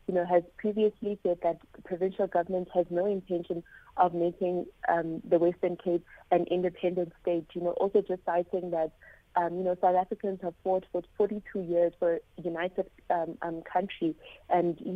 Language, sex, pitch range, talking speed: English, female, 170-190 Hz, 175 wpm